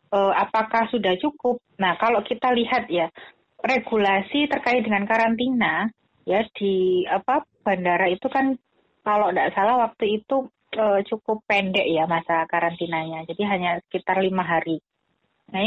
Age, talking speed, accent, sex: 30-49, 135 wpm, native, female